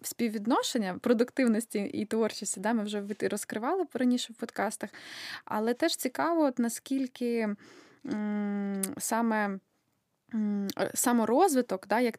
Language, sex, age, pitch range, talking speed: Ukrainian, female, 20-39, 210-255 Hz, 110 wpm